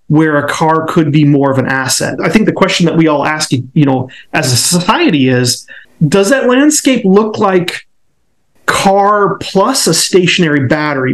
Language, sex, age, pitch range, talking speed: English, male, 30-49, 150-185 Hz, 180 wpm